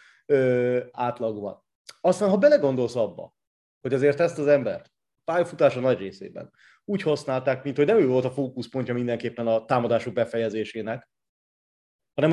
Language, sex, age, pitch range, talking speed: Hungarian, male, 30-49, 115-145 Hz, 135 wpm